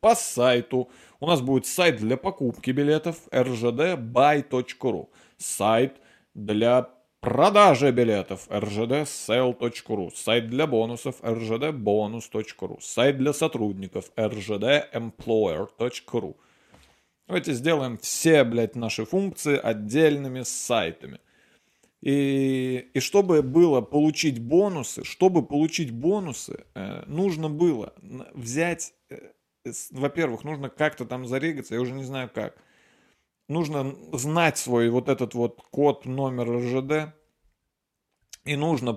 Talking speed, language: 95 wpm, Russian